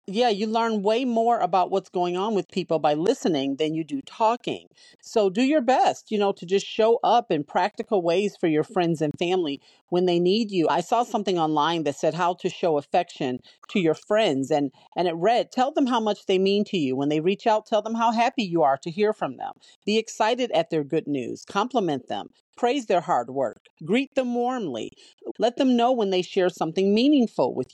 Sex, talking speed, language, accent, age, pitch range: female, 220 wpm, English, American, 40-59, 165-235 Hz